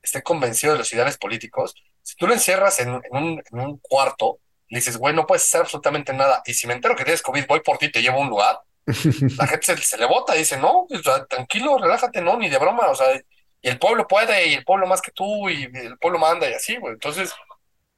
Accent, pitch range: Mexican, 120-175 Hz